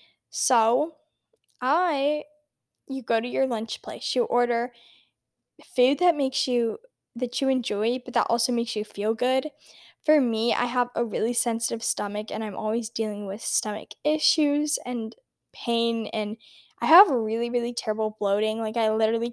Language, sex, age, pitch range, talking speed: English, female, 10-29, 220-260 Hz, 160 wpm